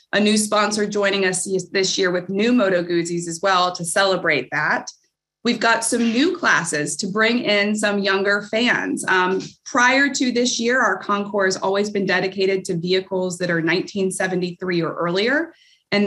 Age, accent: 20-39, American